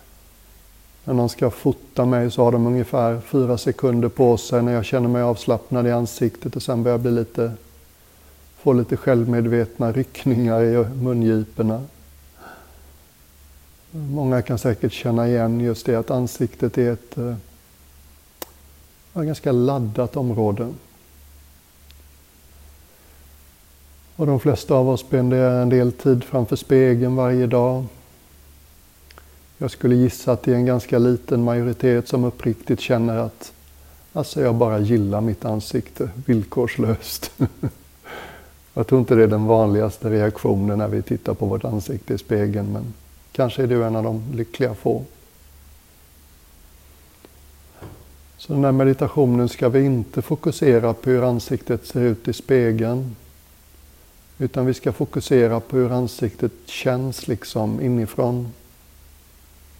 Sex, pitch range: male, 75-125 Hz